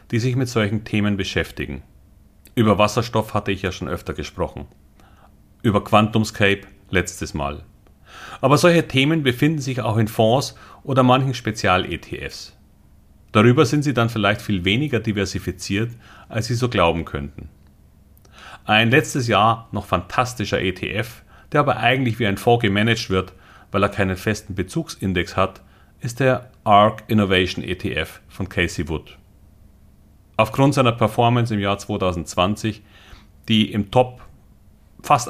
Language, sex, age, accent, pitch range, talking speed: German, male, 40-59, German, 95-120 Hz, 135 wpm